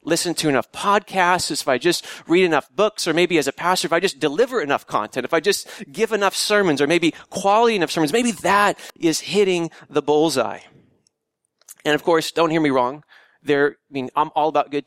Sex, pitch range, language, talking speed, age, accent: male, 150-200 Hz, English, 210 wpm, 30-49, American